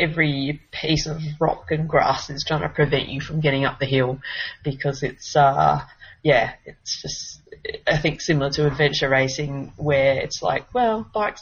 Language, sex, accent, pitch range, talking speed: English, female, Australian, 135-155 Hz, 175 wpm